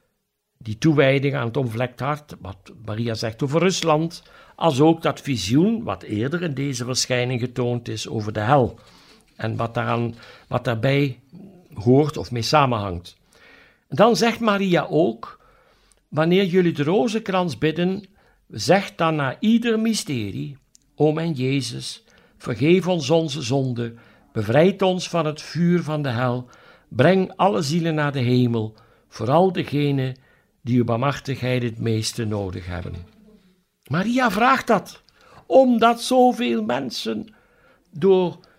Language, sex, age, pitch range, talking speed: Dutch, male, 60-79, 125-195 Hz, 130 wpm